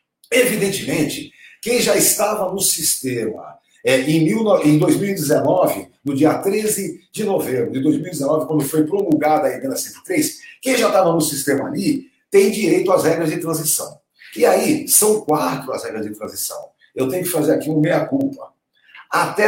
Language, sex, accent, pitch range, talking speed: Portuguese, male, Brazilian, 160-235 Hz, 160 wpm